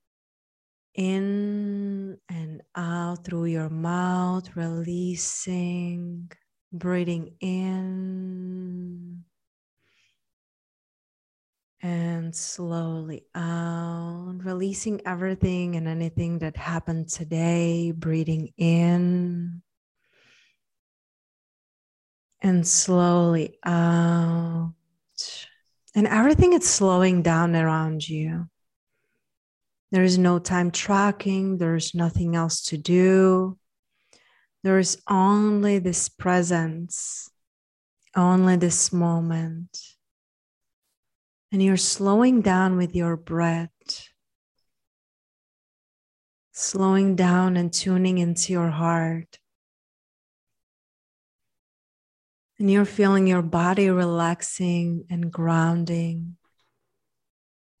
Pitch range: 170-185 Hz